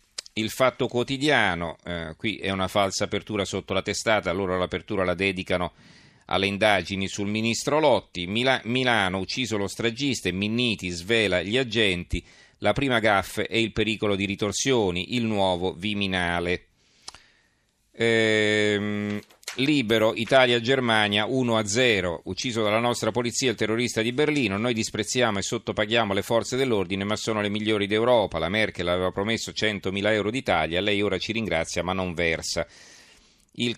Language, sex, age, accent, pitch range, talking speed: Italian, male, 40-59, native, 95-115 Hz, 145 wpm